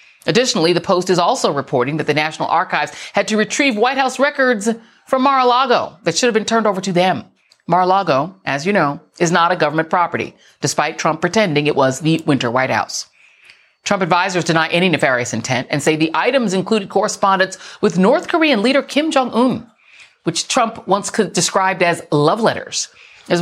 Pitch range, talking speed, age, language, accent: 160-230 Hz, 180 wpm, 40-59, English, American